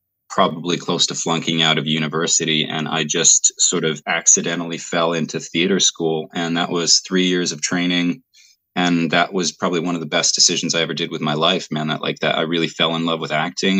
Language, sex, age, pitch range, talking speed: English, male, 20-39, 80-90 Hz, 215 wpm